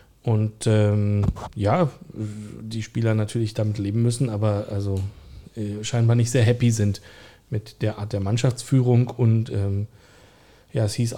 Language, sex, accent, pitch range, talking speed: German, male, German, 110-140 Hz, 145 wpm